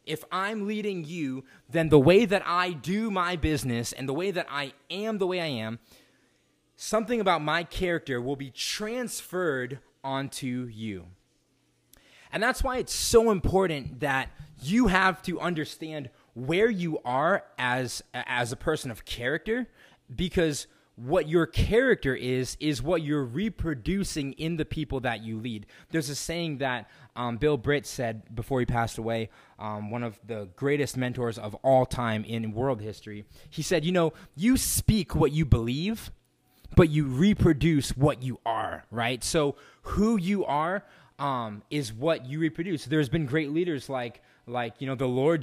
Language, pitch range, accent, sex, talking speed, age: English, 125-175 Hz, American, male, 165 wpm, 20-39